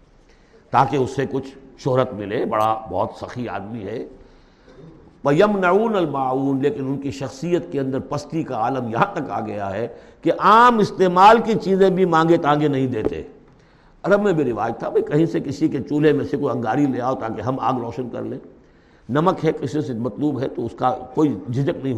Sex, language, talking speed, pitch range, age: male, Urdu, 195 wpm, 120-155 Hz, 60-79